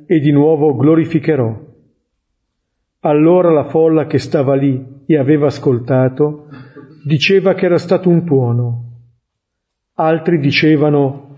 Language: Italian